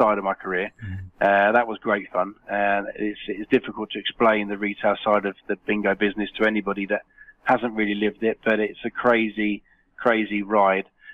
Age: 20-39